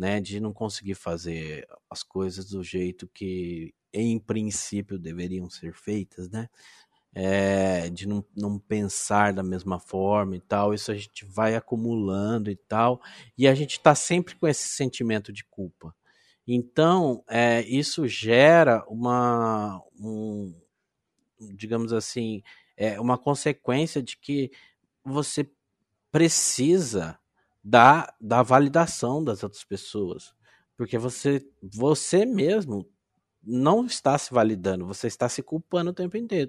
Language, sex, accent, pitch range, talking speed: Portuguese, male, Brazilian, 100-140 Hz, 125 wpm